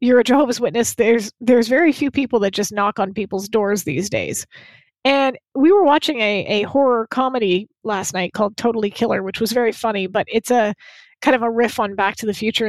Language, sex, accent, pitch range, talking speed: English, female, American, 205-275 Hz, 220 wpm